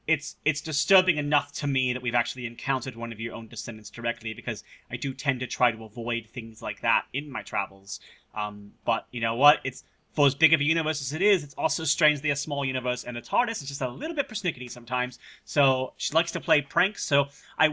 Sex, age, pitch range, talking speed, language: male, 30-49, 125-170 Hz, 235 wpm, English